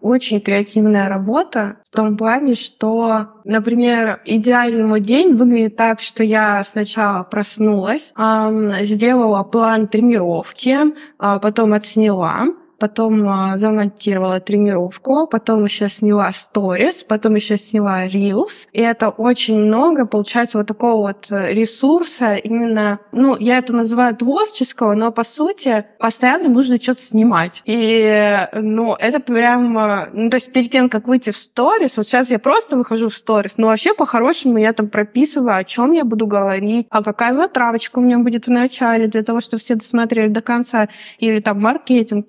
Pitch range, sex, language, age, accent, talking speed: 210-240 Hz, female, Russian, 20-39, native, 150 wpm